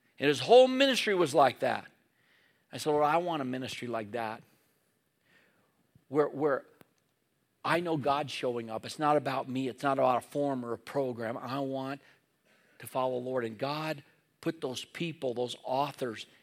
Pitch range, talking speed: 130-180 Hz, 175 wpm